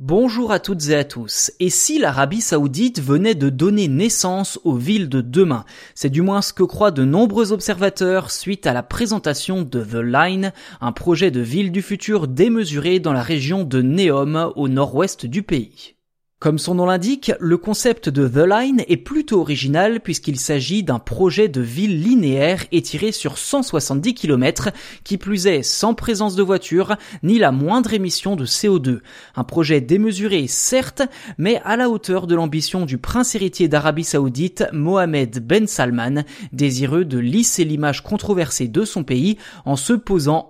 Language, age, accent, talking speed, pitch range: French, 20-39, French, 170 wpm, 140-205 Hz